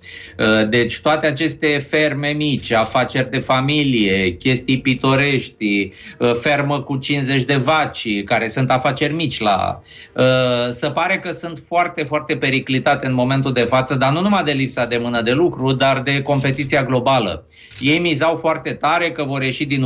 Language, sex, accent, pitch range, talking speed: Romanian, male, native, 125-155 Hz, 155 wpm